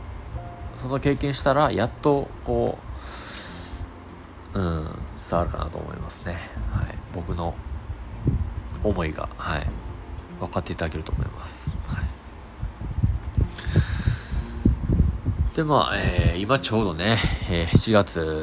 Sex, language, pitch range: male, Japanese, 80-100 Hz